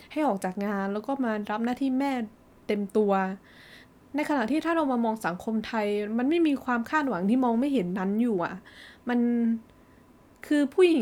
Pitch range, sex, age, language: 205-270 Hz, female, 20-39, Thai